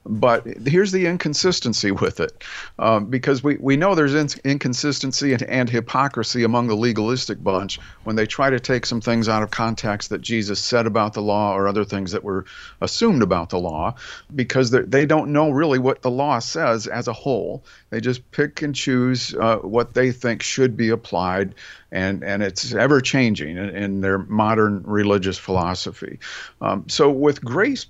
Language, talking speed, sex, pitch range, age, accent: English, 180 wpm, male, 110-135 Hz, 50-69, American